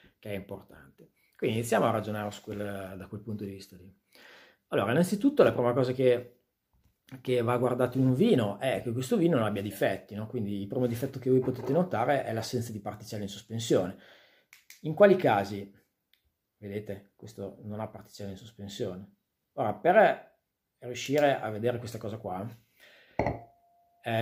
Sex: male